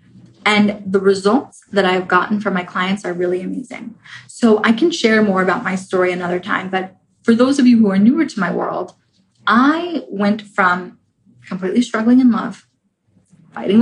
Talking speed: 180 wpm